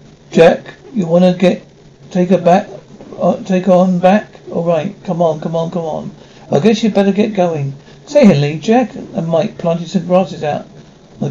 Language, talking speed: English, 195 wpm